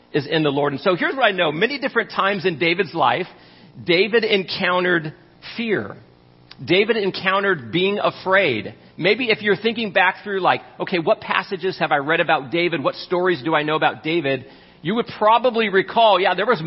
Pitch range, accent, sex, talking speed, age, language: 135-195 Hz, American, male, 185 wpm, 40-59, English